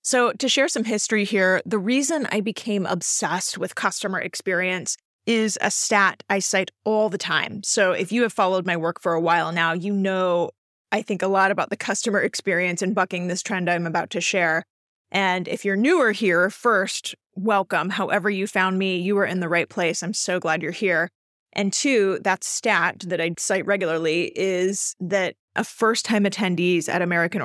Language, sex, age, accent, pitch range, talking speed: English, female, 30-49, American, 180-215 Hz, 190 wpm